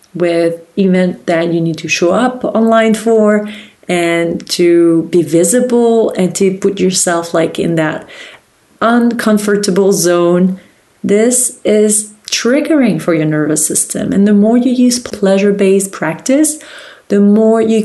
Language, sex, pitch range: English, female, 170-210 Hz